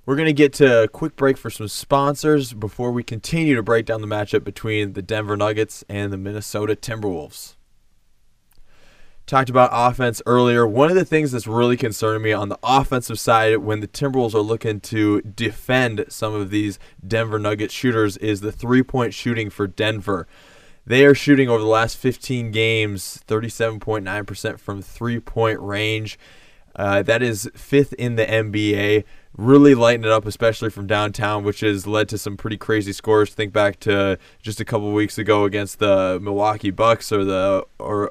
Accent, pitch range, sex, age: American, 105-125 Hz, male, 20-39